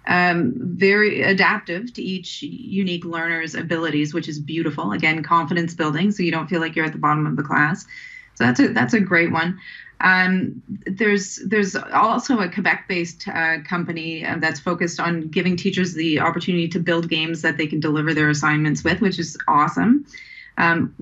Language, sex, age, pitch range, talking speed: English, female, 30-49, 160-200 Hz, 170 wpm